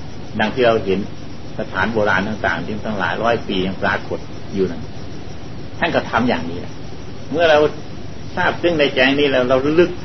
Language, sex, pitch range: Thai, male, 105-140 Hz